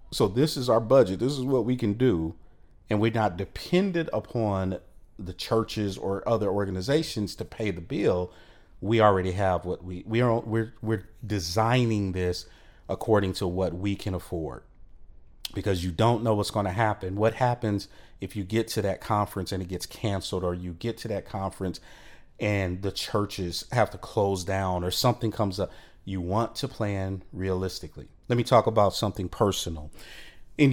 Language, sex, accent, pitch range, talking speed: English, male, American, 95-120 Hz, 180 wpm